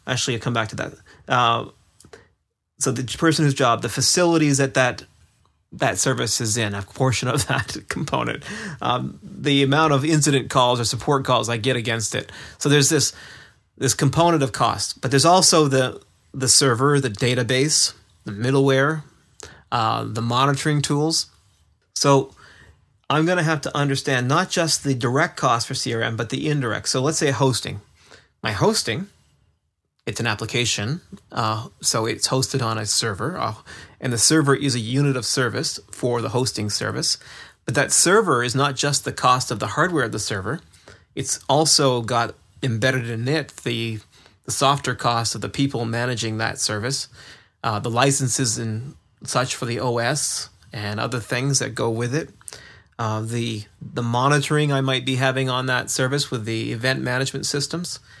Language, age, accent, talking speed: English, 30-49, American, 170 wpm